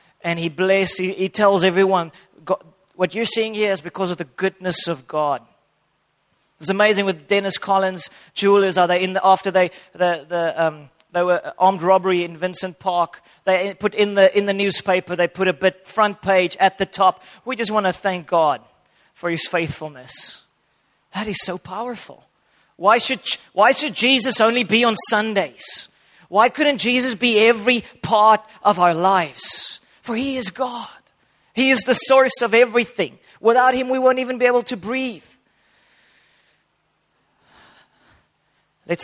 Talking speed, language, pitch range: 165 wpm, English, 175-215 Hz